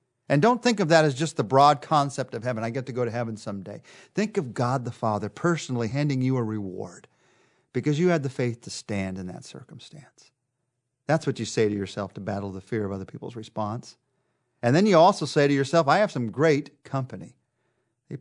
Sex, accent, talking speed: male, American, 220 wpm